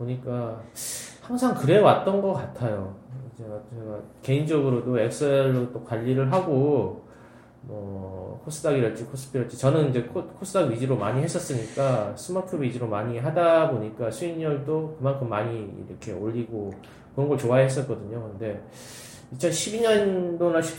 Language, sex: Korean, male